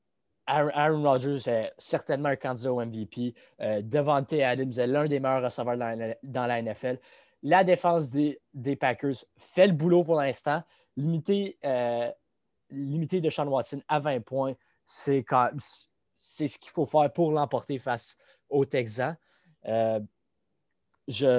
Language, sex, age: French, male, 20-39